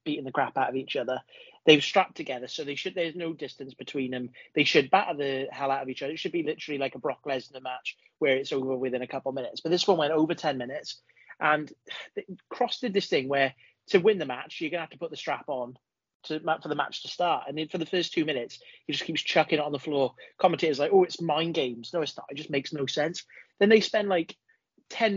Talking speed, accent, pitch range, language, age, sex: 260 wpm, British, 140-170 Hz, English, 30-49, male